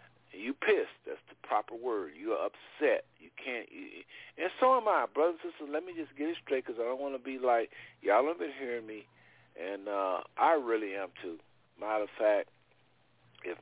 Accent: American